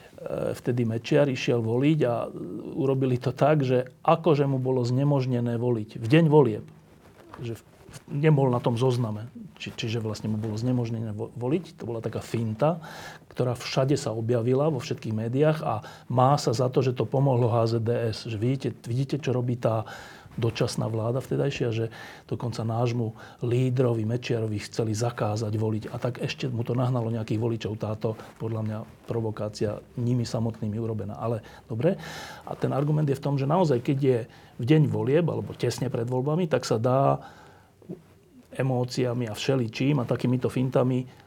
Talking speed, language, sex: 155 wpm, Slovak, male